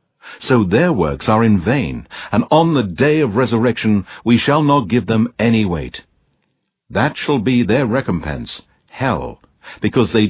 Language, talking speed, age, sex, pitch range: English, 155 wpm, 60-79, male, 100-130 Hz